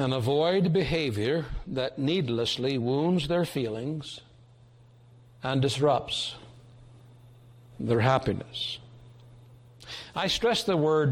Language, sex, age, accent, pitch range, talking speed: English, male, 60-79, American, 120-145 Hz, 85 wpm